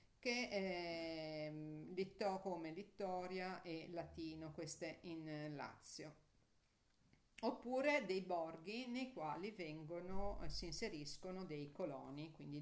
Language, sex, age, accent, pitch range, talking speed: Italian, female, 50-69, native, 160-205 Hz, 110 wpm